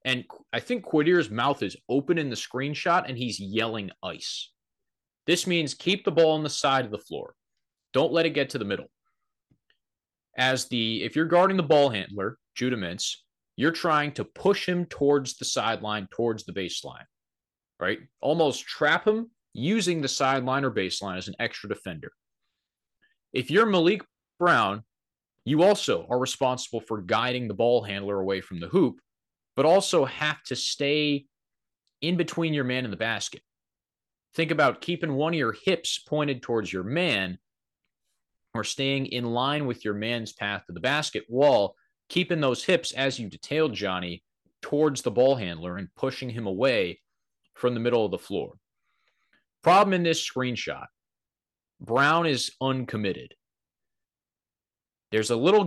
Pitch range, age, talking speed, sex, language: 110-155 Hz, 30-49, 160 wpm, male, English